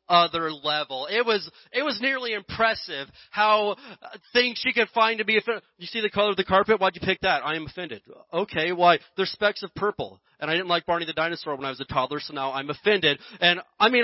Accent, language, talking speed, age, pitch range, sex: American, English, 240 wpm, 30-49, 185-250 Hz, male